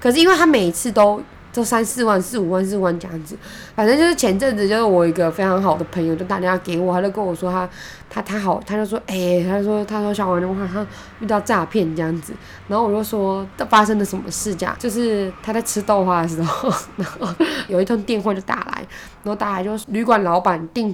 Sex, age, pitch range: female, 20-39, 175-210 Hz